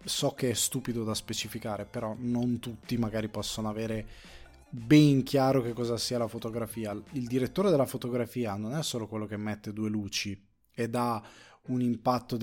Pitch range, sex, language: 105-125 Hz, male, Italian